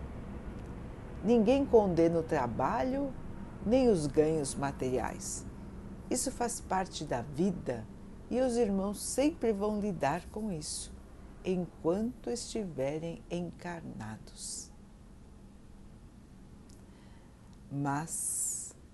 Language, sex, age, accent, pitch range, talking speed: Portuguese, female, 60-79, Brazilian, 135-195 Hz, 80 wpm